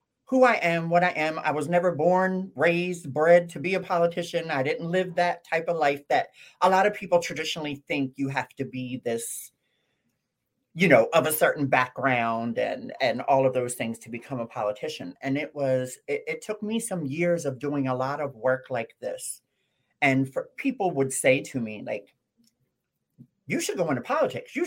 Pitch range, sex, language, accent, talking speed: 135-185 Hz, male, English, American, 200 wpm